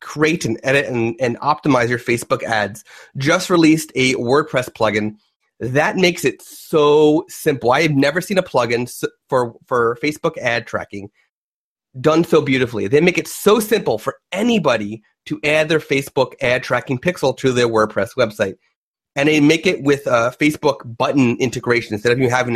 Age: 30-49